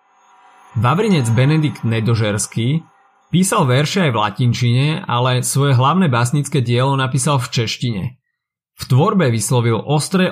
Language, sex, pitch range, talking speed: Slovak, male, 120-150 Hz, 115 wpm